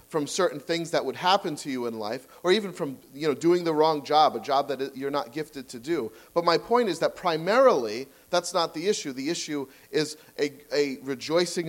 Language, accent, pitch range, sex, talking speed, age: English, American, 130-175 Hz, male, 220 wpm, 40-59